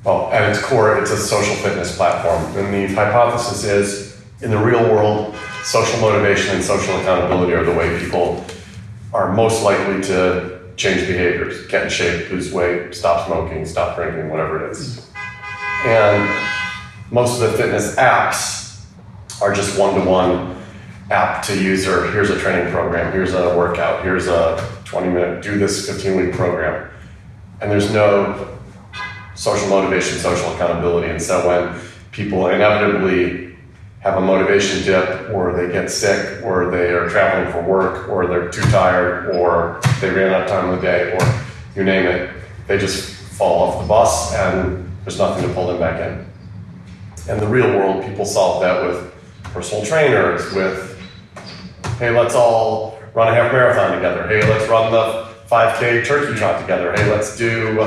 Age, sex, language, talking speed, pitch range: 30-49, male, English, 165 wpm, 90-105 Hz